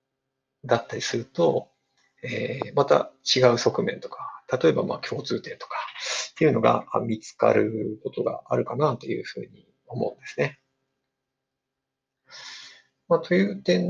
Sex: male